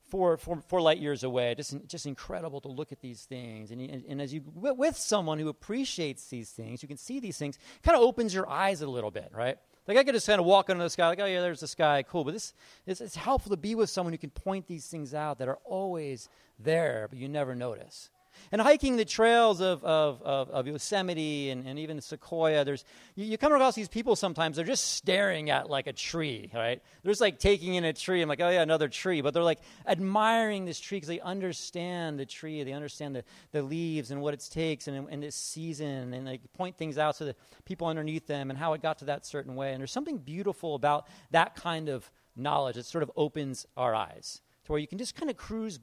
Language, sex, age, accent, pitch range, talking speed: English, male, 30-49, American, 140-190 Hz, 245 wpm